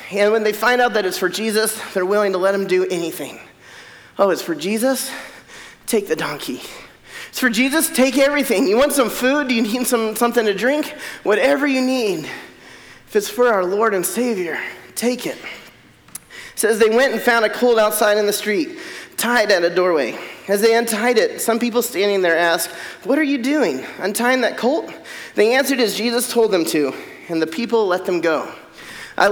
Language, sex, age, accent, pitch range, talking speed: English, male, 30-49, American, 200-245 Hz, 200 wpm